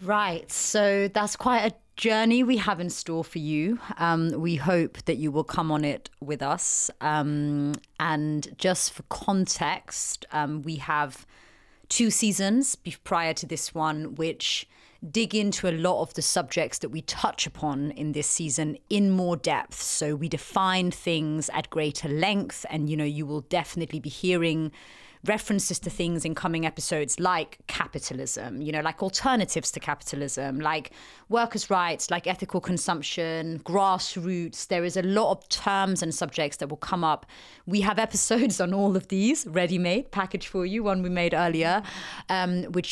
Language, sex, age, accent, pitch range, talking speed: English, female, 30-49, British, 155-190 Hz, 170 wpm